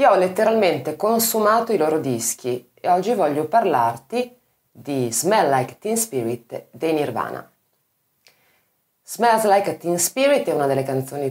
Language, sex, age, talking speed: Italian, female, 30-49, 150 wpm